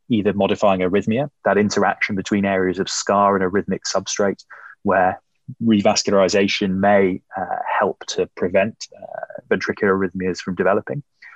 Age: 20-39